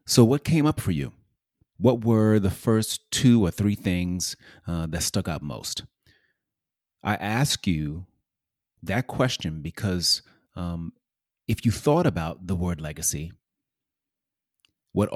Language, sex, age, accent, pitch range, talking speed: English, male, 30-49, American, 90-110 Hz, 135 wpm